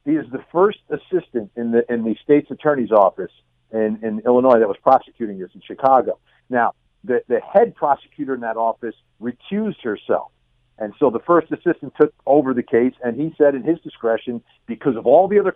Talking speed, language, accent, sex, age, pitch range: 195 wpm, English, American, male, 50-69, 120-155 Hz